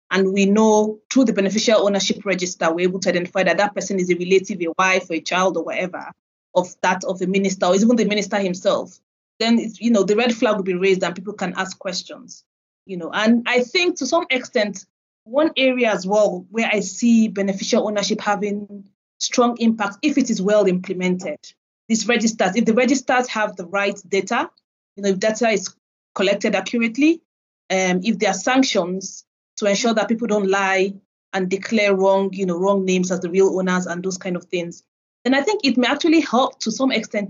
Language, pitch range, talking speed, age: English, 190-225 Hz, 205 wpm, 30-49